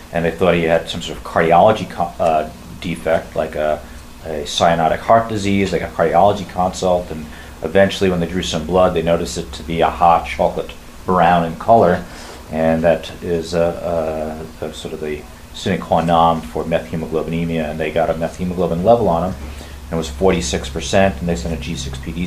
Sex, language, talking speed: male, English, 190 wpm